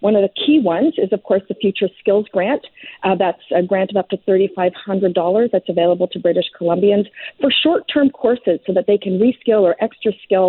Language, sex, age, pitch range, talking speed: English, female, 40-59, 180-210 Hz, 205 wpm